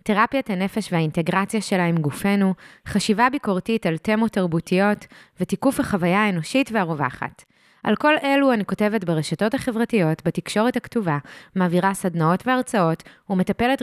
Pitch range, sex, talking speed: 185-240 Hz, female, 115 wpm